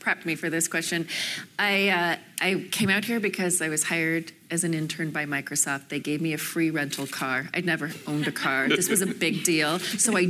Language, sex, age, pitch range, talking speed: English, female, 30-49, 150-185 Hz, 225 wpm